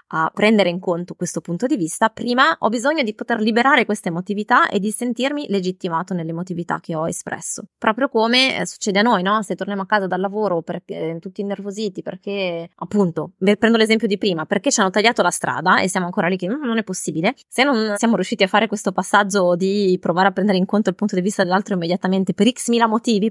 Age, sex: 20-39, female